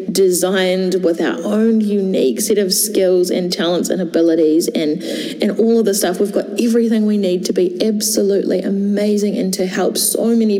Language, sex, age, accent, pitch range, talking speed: English, female, 20-39, Australian, 190-235 Hz, 180 wpm